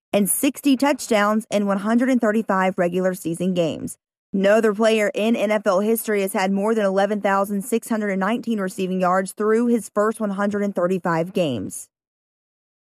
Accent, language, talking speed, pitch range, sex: American, English, 120 wpm, 195-240 Hz, female